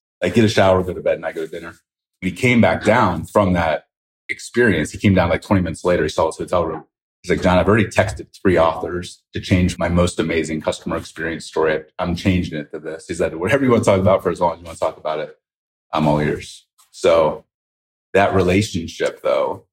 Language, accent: English, American